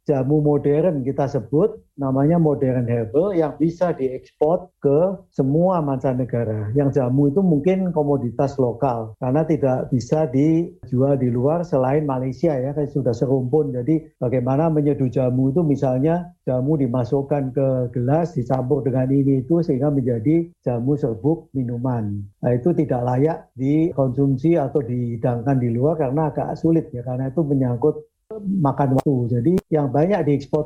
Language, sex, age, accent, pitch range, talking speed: Indonesian, male, 50-69, native, 125-155 Hz, 140 wpm